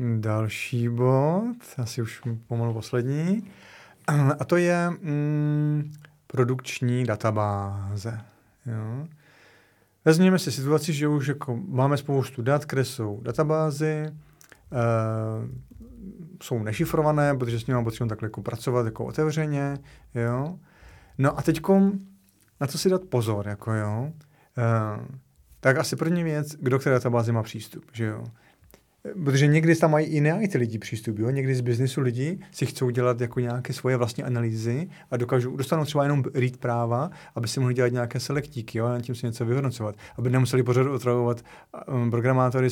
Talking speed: 145 wpm